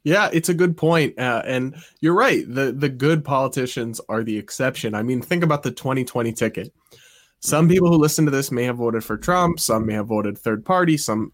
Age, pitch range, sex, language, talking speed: 20-39, 110-160 Hz, male, English, 215 wpm